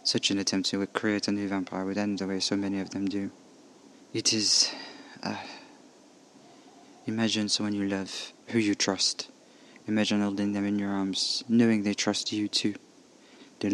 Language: English